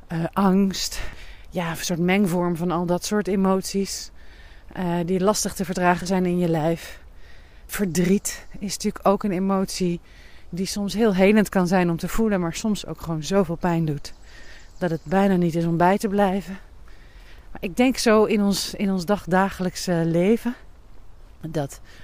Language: Dutch